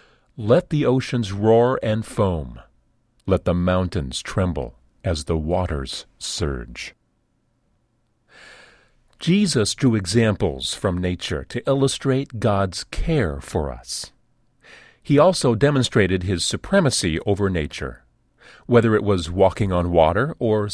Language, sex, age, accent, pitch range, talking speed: English, male, 40-59, American, 85-125 Hz, 115 wpm